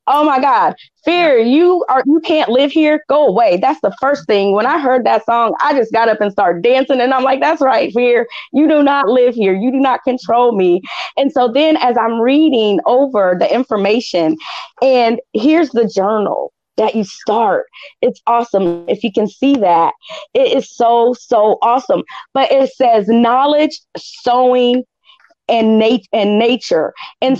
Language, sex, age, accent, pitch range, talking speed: English, female, 30-49, American, 225-285 Hz, 175 wpm